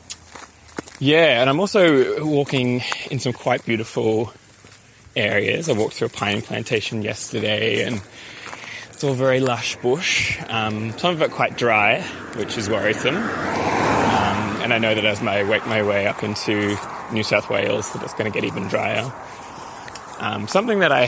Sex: male